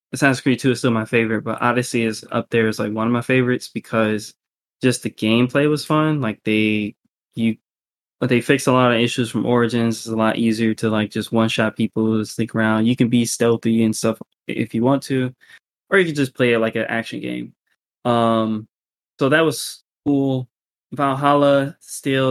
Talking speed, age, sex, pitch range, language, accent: 200 wpm, 20-39, male, 110-125 Hz, English, American